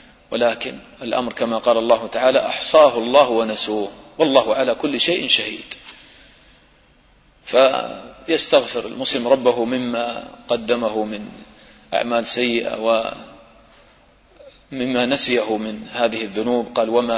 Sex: male